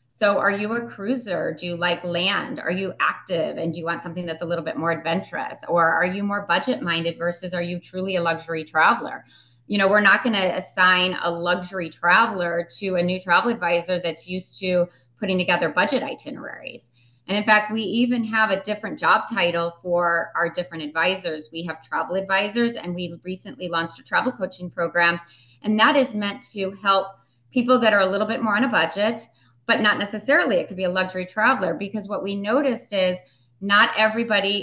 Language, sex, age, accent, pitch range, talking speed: English, female, 30-49, American, 170-215 Hz, 200 wpm